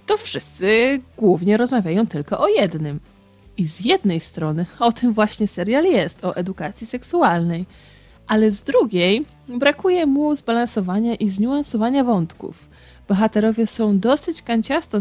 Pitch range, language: 180-245 Hz, Polish